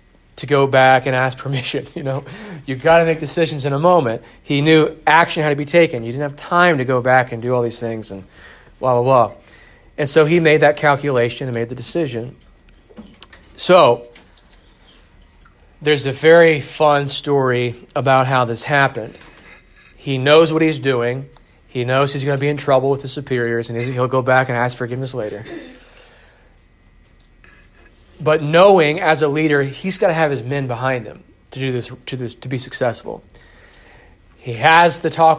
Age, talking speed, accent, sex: 30-49, 185 wpm, American, male